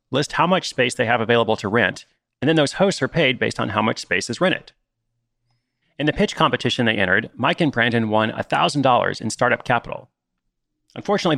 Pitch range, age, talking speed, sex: 110-145 Hz, 30-49, 195 wpm, male